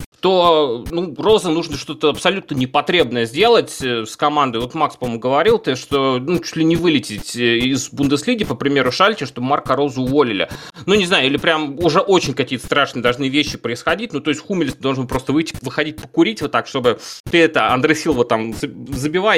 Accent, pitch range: native, 130-165 Hz